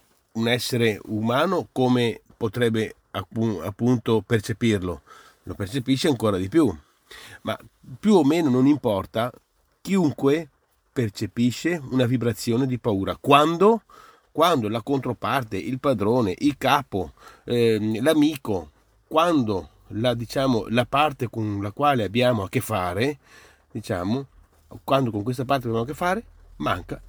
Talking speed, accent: 125 wpm, native